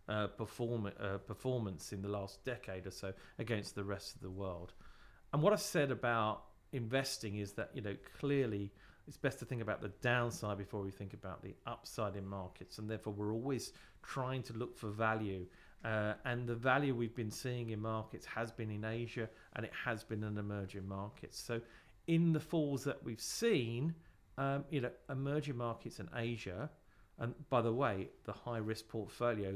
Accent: British